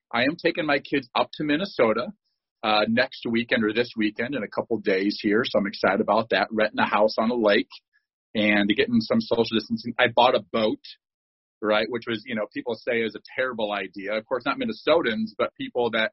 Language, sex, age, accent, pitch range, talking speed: English, male, 40-59, American, 105-130 Hz, 210 wpm